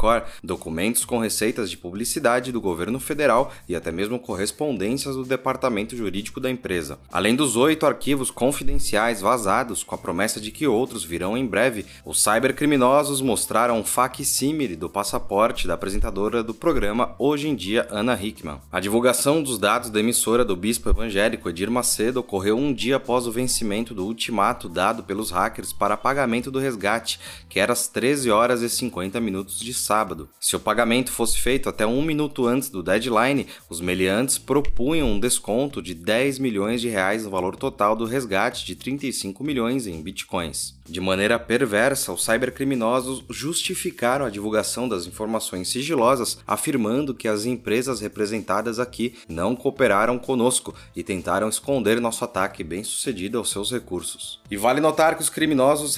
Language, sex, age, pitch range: Portuguese, male, 20-39, 105-135 Hz